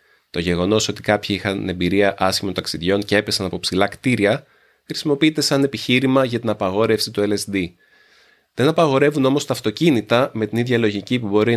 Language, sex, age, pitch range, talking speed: Greek, male, 30-49, 95-120 Hz, 165 wpm